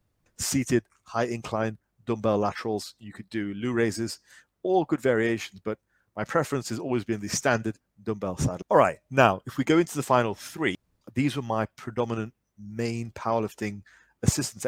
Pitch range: 105-125 Hz